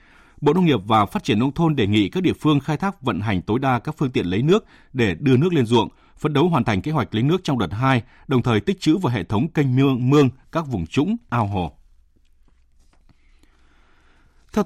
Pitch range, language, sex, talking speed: 95-130 Hz, Vietnamese, male, 230 wpm